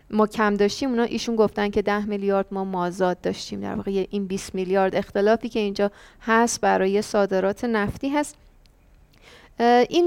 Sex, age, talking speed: female, 30-49, 155 wpm